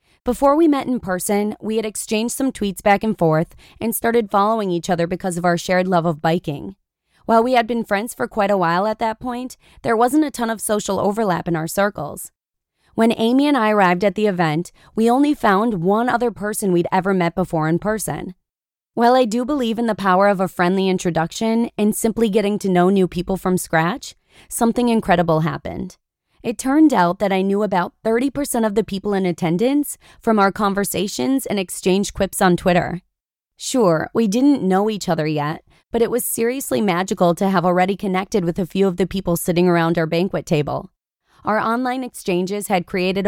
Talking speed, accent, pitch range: 200 wpm, American, 180-225 Hz